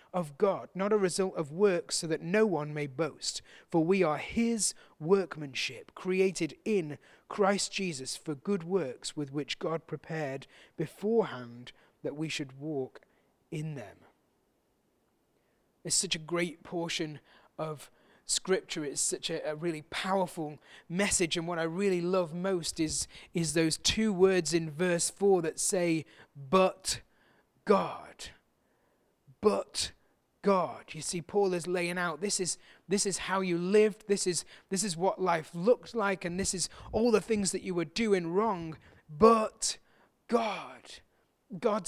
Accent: British